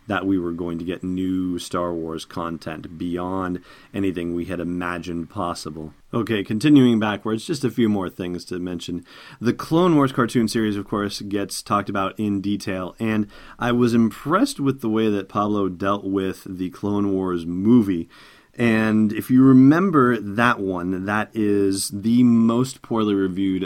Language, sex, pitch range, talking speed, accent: English, male, 90-120 Hz, 165 wpm, American